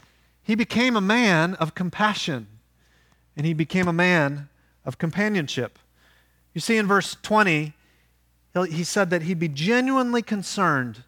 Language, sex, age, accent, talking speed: English, male, 40-59, American, 135 wpm